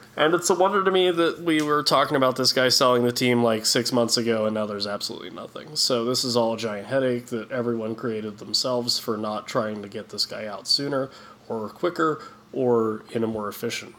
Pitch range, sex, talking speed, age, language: 115-125 Hz, male, 225 wpm, 20-39, English